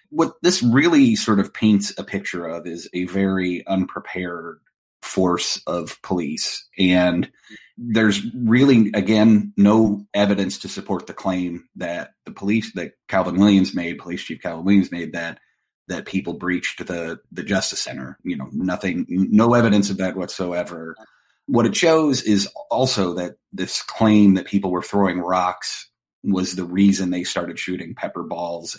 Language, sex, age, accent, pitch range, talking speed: English, male, 30-49, American, 90-105 Hz, 155 wpm